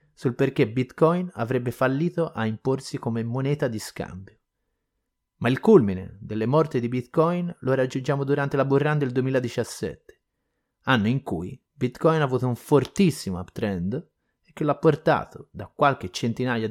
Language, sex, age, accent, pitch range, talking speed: Italian, male, 30-49, native, 110-140 Hz, 145 wpm